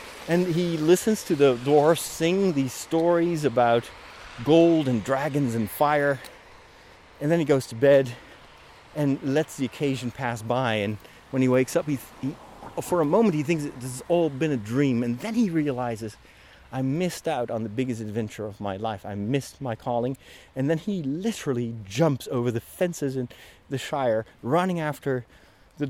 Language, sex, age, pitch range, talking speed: English, male, 30-49, 115-150 Hz, 185 wpm